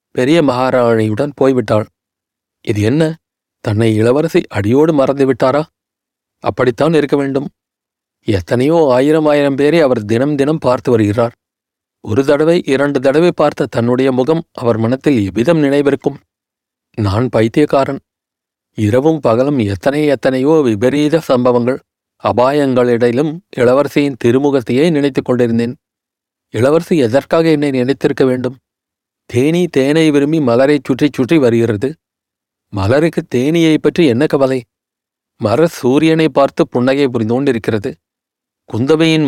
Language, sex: Tamil, male